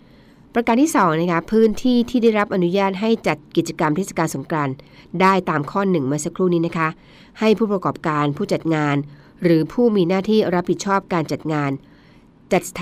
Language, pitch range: Thai, 155-195 Hz